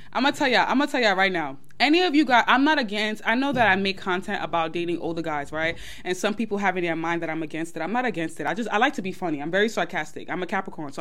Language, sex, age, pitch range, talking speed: English, female, 20-39, 180-285 Hz, 320 wpm